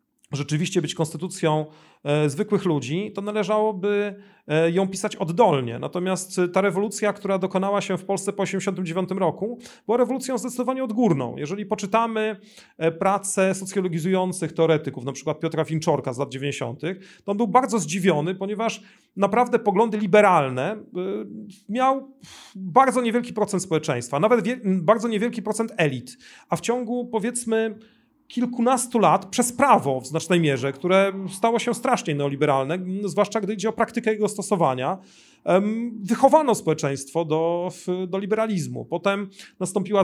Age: 40-59